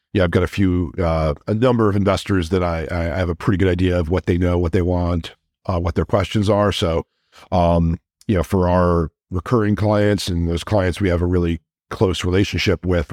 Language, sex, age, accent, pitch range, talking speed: English, male, 50-69, American, 85-100 Hz, 220 wpm